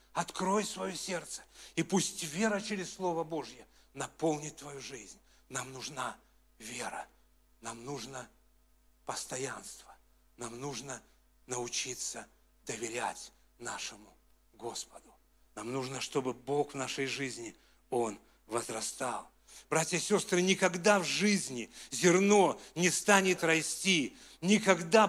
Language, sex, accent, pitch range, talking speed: Russian, male, native, 160-205 Hz, 105 wpm